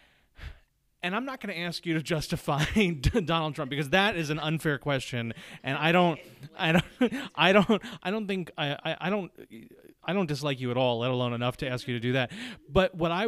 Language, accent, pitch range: English, American, 120-165 Hz